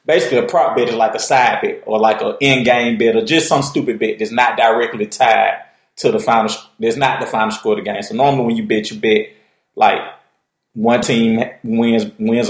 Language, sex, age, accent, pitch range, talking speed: English, male, 30-49, American, 110-140 Hz, 220 wpm